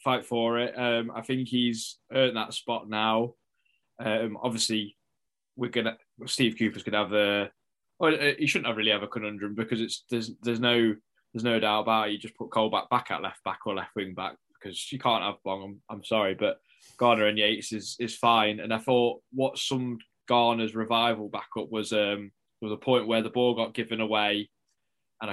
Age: 10-29